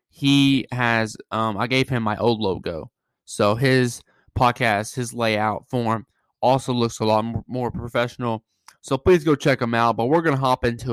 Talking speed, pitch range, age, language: 175 wpm, 115-135 Hz, 20-39, English